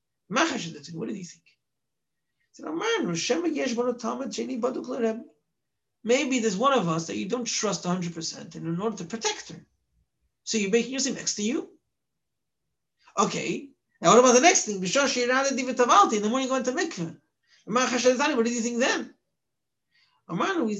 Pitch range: 195-260 Hz